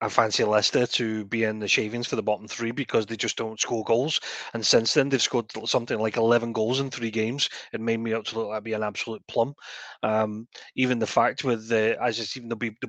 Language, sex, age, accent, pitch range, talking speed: English, male, 30-49, British, 110-135 Hz, 240 wpm